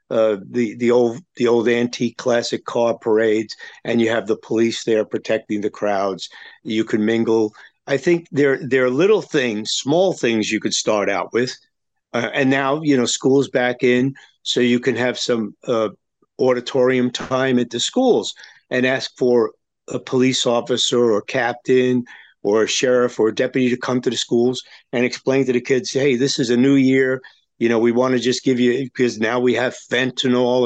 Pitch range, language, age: 120-135 Hz, English, 50-69